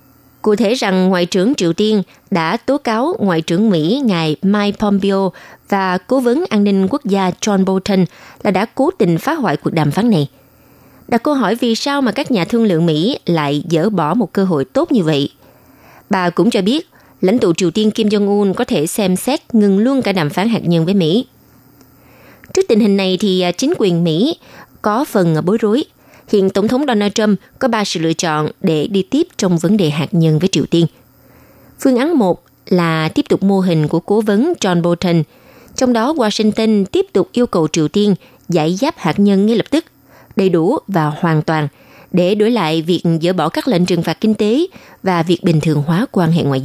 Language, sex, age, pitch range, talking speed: Vietnamese, female, 20-39, 165-225 Hz, 210 wpm